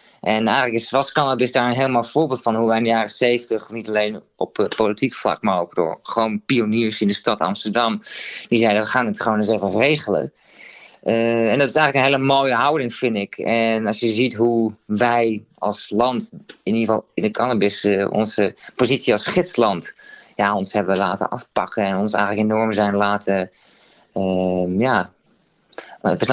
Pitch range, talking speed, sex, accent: 105-125 Hz, 195 wpm, male, Dutch